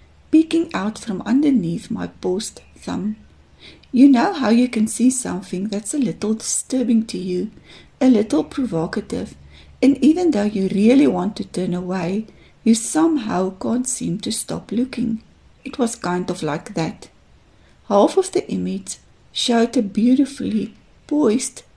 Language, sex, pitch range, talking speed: Dutch, female, 195-245 Hz, 145 wpm